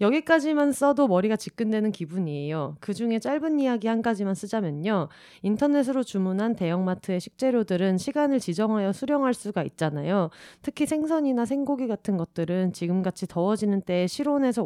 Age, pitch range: 30-49, 180-250 Hz